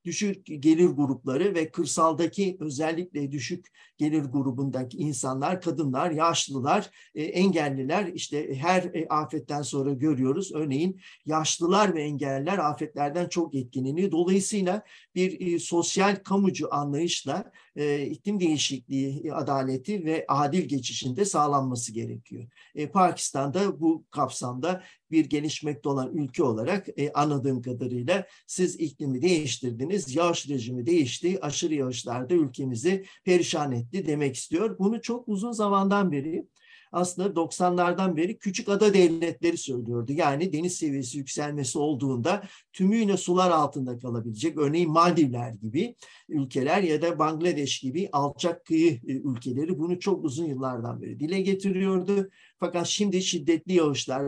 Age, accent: 50-69, native